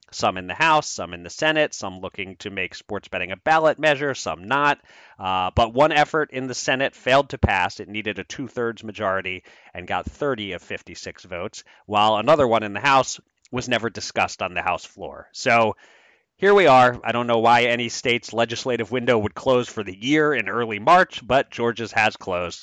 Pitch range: 105-155 Hz